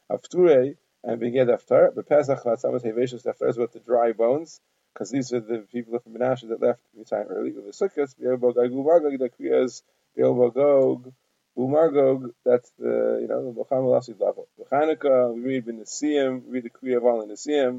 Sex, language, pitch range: male, English, 120-150 Hz